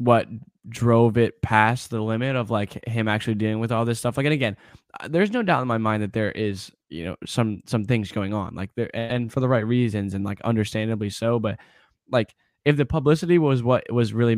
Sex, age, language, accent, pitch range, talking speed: male, 10-29, English, American, 105-120 Hz, 225 wpm